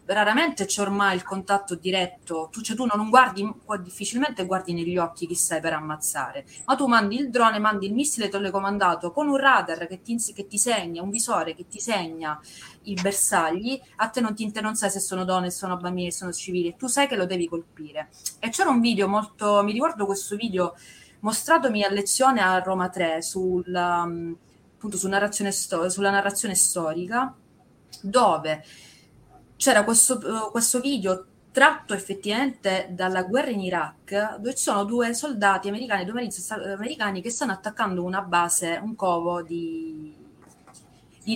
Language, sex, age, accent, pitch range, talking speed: Italian, female, 20-39, native, 180-245 Hz, 170 wpm